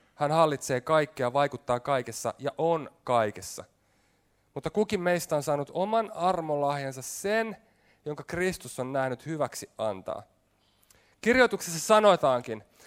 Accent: native